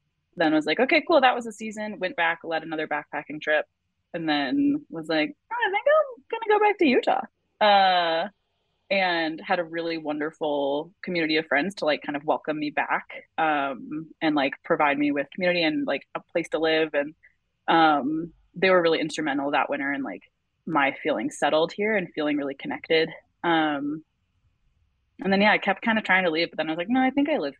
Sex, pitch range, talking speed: female, 150-185 Hz, 210 wpm